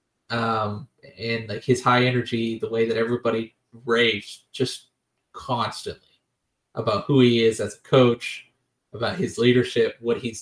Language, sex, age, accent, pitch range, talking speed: English, male, 20-39, American, 115-150 Hz, 145 wpm